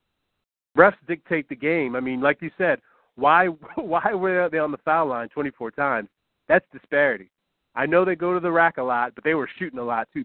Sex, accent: male, American